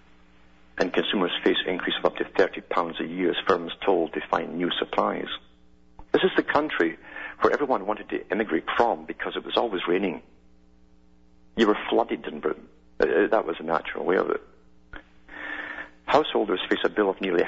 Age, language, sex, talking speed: 50-69, English, male, 170 wpm